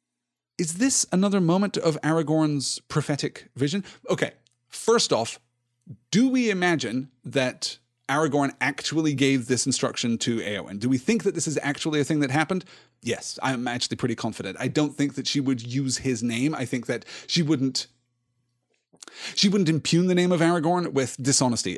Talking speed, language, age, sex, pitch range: 170 wpm, English, 30-49, male, 125-150 Hz